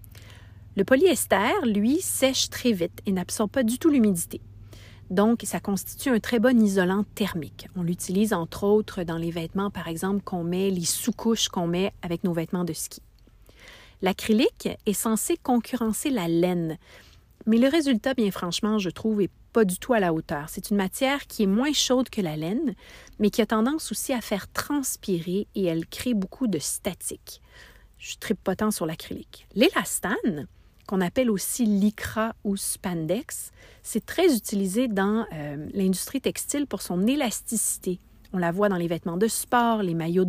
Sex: female